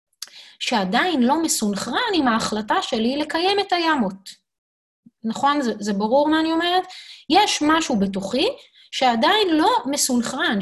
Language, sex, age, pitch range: Hebrew, female, 20-39, 200-285 Hz